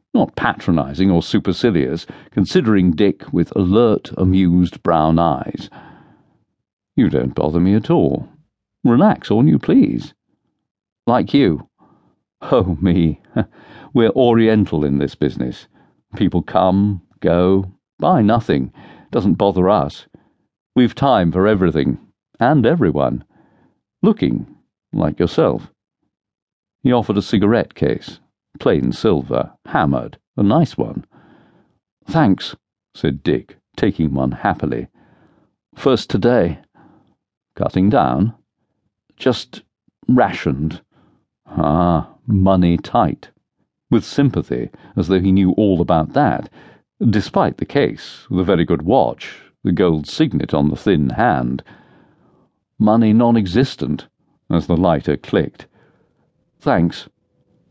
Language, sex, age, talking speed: English, male, 50-69, 105 wpm